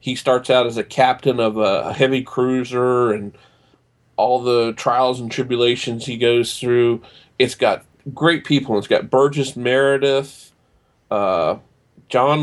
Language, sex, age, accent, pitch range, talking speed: English, male, 40-59, American, 115-135 Hz, 140 wpm